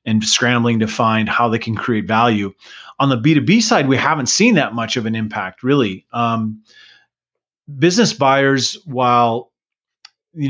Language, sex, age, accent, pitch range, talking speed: English, male, 30-49, American, 115-140 Hz, 155 wpm